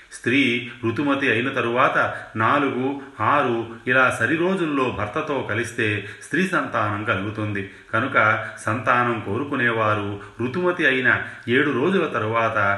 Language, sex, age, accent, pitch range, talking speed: Telugu, male, 30-49, native, 105-125 Hz, 105 wpm